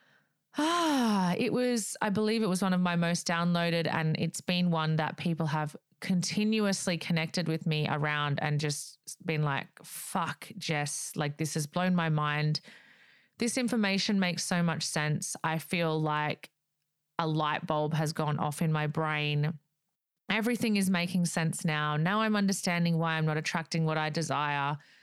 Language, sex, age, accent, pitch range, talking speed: English, female, 30-49, Australian, 155-195 Hz, 165 wpm